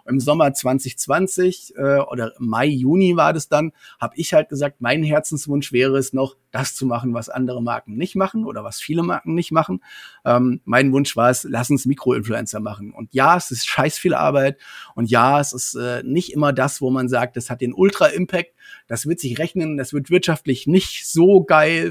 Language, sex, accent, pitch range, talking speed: German, male, German, 125-170 Hz, 205 wpm